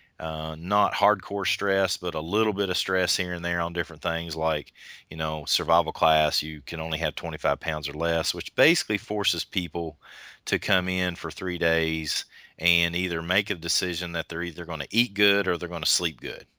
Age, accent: 30-49, American